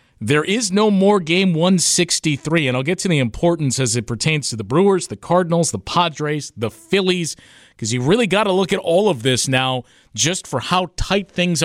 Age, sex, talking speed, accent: 40-59, male, 205 wpm, American